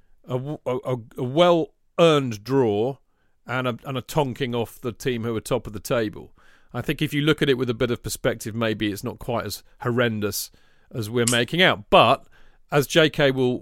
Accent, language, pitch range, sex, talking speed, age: British, English, 115-150 Hz, male, 200 wpm, 40-59